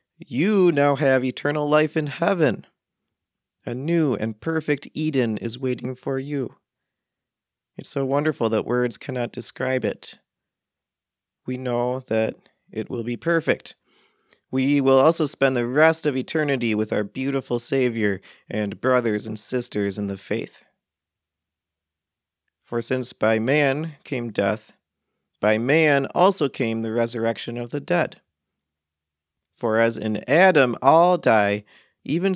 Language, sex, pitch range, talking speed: English, male, 105-140 Hz, 135 wpm